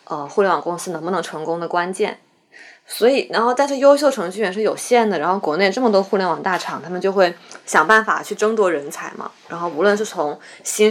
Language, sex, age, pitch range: Chinese, female, 20-39, 175-240 Hz